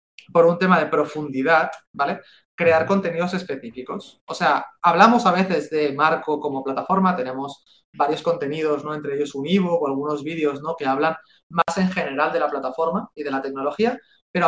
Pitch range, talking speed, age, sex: 140-180 Hz, 180 wpm, 20-39, male